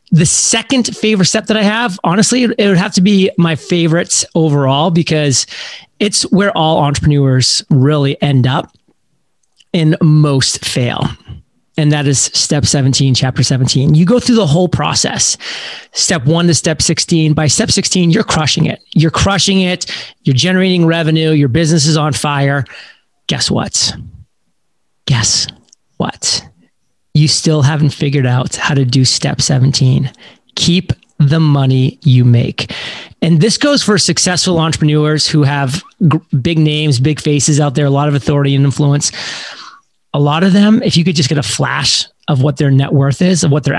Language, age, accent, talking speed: English, 30-49, American, 165 wpm